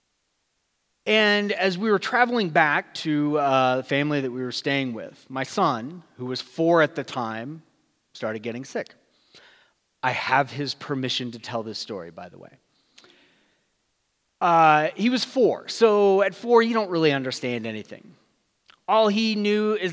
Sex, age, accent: male, 30-49, American